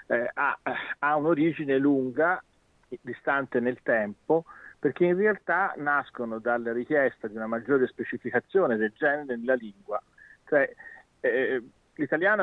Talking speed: 120 wpm